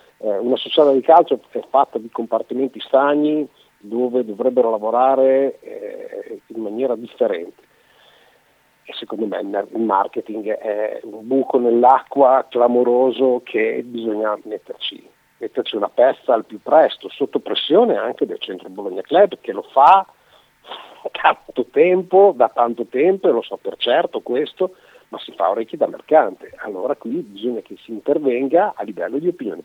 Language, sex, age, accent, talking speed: Italian, male, 50-69, native, 145 wpm